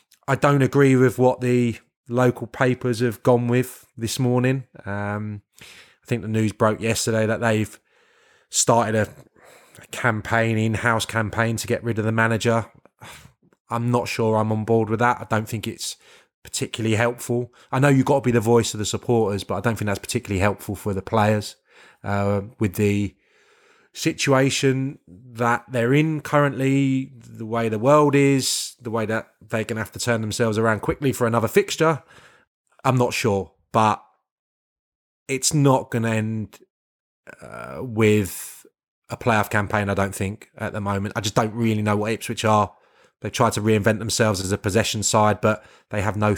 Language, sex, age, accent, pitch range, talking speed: English, male, 20-39, British, 105-125 Hz, 180 wpm